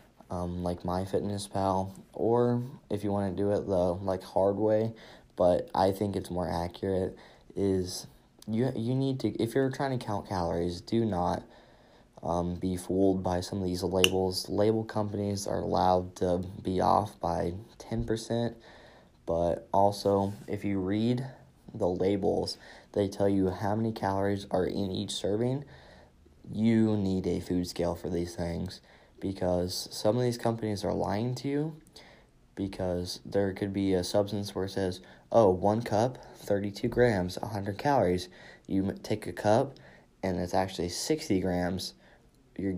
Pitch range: 90-105 Hz